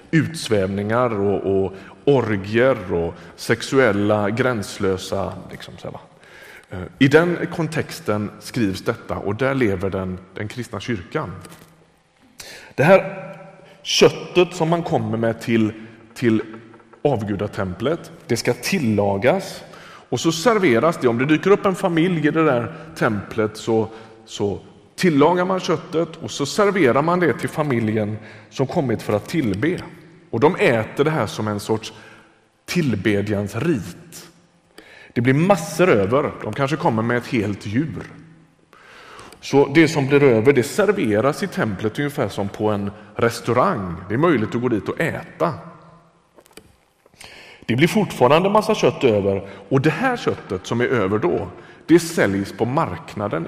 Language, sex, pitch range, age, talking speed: Swedish, male, 105-160 Hz, 30-49, 140 wpm